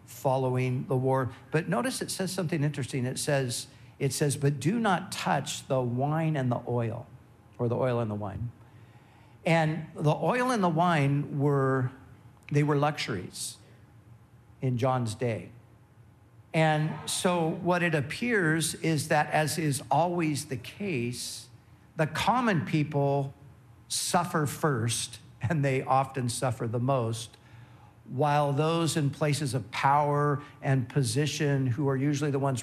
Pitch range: 120-150 Hz